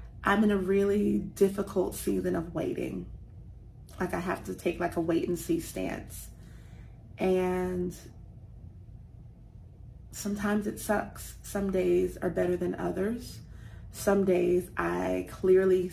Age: 30-49